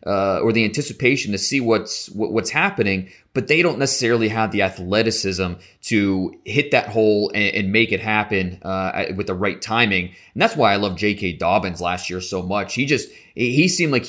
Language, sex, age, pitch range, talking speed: English, male, 30-49, 95-125 Hz, 200 wpm